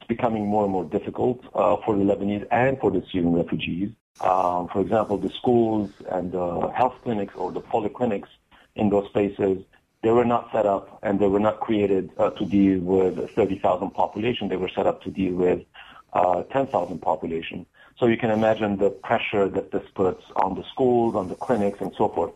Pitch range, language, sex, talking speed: 95-115 Hz, English, male, 195 wpm